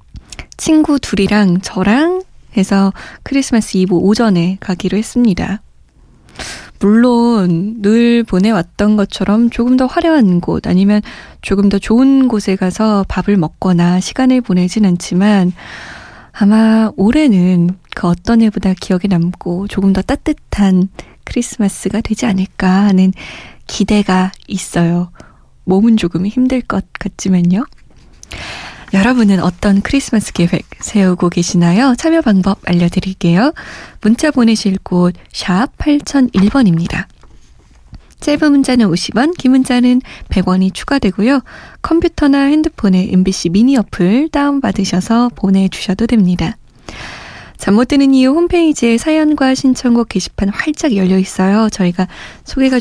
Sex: female